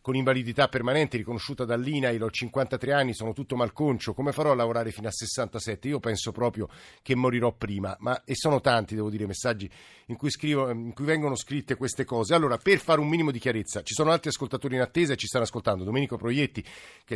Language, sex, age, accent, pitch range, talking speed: Italian, male, 50-69, native, 115-150 Hz, 210 wpm